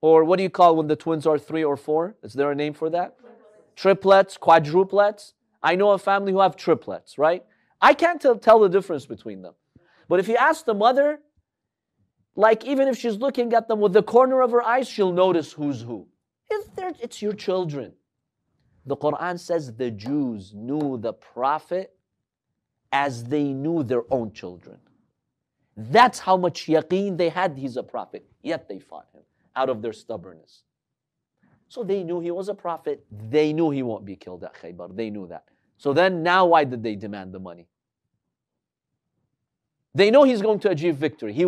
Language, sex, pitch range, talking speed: English, male, 140-215 Hz, 185 wpm